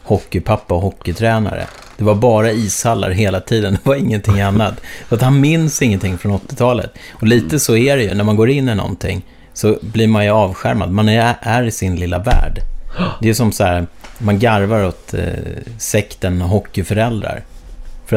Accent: Swedish